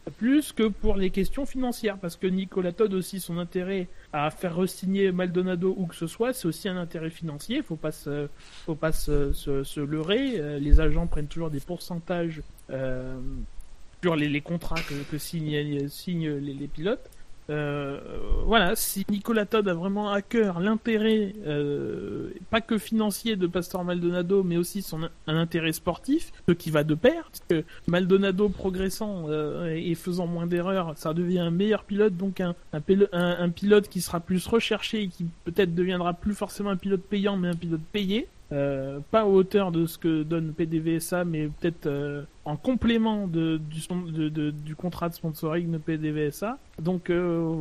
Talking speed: 185 wpm